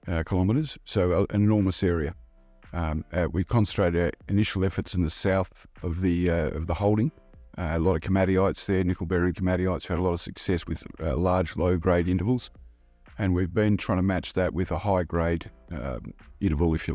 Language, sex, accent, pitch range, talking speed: English, male, Australian, 85-100 Hz, 195 wpm